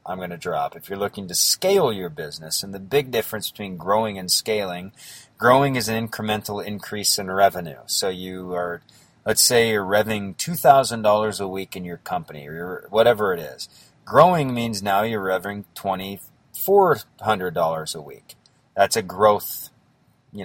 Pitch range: 95-120 Hz